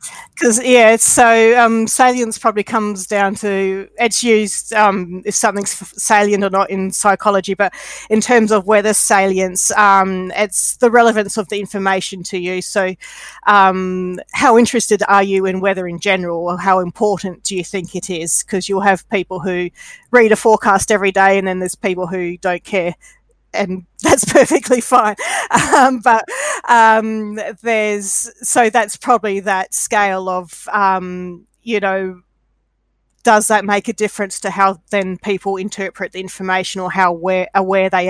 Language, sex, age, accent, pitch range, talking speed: English, female, 40-59, Australian, 185-215 Hz, 160 wpm